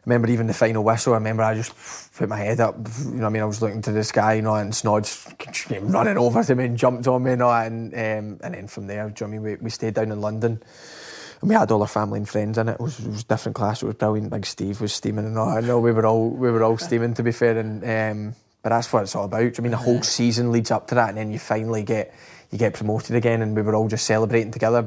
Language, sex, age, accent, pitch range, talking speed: English, male, 20-39, British, 110-120 Hz, 305 wpm